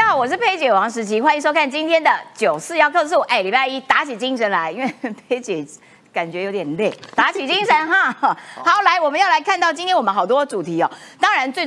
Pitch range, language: 220-330 Hz, Chinese